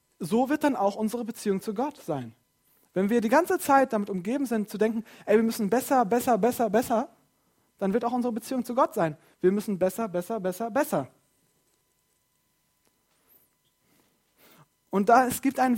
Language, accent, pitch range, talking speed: German, German, 190-260 Hz, 165 wpm